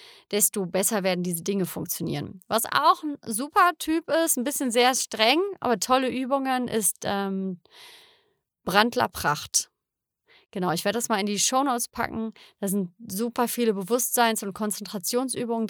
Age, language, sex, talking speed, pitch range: 30-49, German, female, 150 wpm, 190-245 Hz